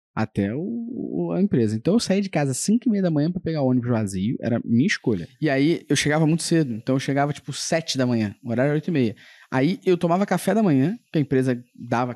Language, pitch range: Portuguese, 120-180 Hz